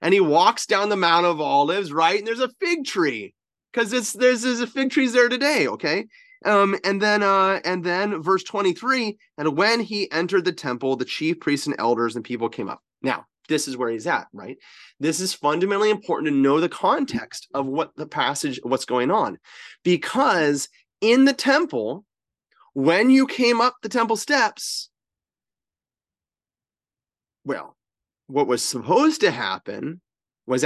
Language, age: English, 30-49